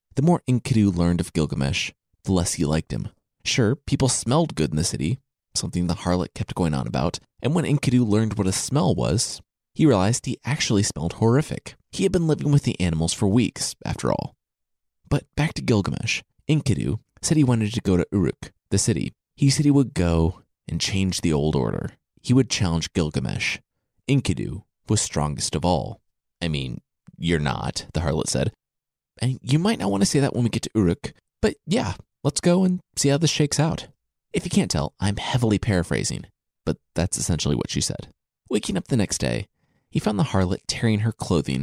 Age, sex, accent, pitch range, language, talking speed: 30-49, male, American, 90-140 Hz, English, 200 wpm